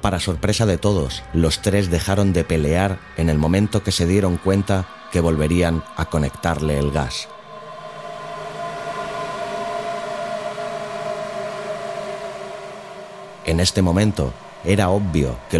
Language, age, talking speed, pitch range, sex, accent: Spanish, 30-49, 110 wpm, 80-100 Hz, male, Spanish